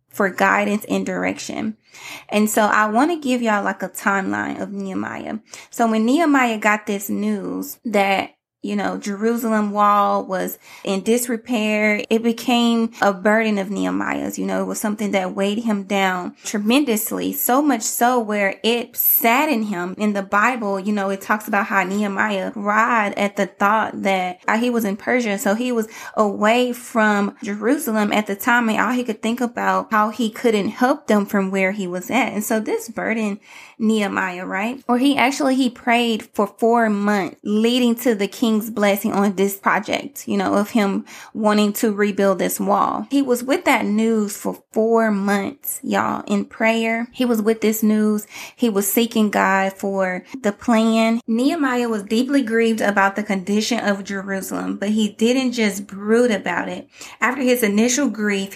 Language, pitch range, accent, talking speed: English, 200-235 Hz, American, 175 wpm